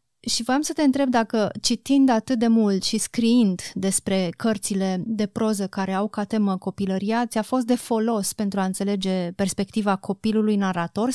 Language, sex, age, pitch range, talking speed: Romanian, female, 30-49, 195-225 Hz, 165 wpm